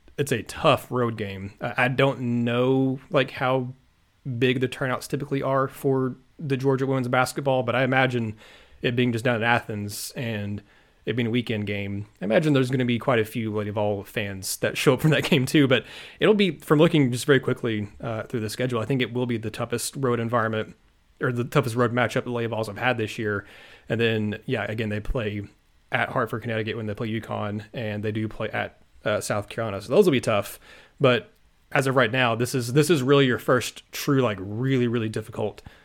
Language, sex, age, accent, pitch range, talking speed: English, male, 30-49, American, 110-130 Hz, 220 wpm